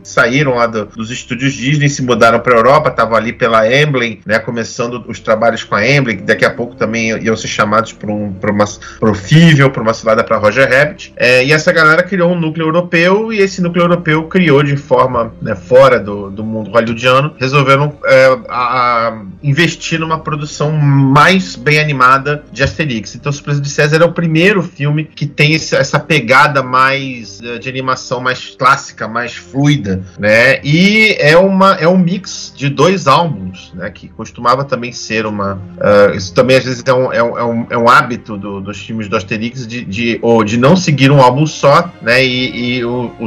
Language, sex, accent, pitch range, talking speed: Portuguese, male, Brazilian, 115-150 Hz, 195 wpm